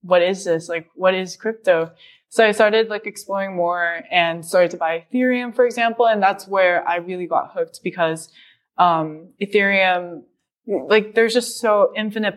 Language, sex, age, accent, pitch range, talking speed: English, female, 20-39, American, 170-210 Hz, 170 wpm